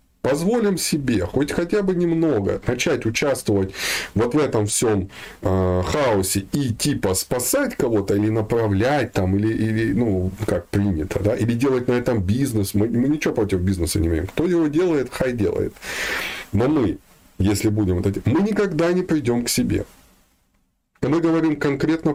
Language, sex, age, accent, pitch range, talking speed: Russian, male, 20-39, native, 100-145 Hz, 165 wpm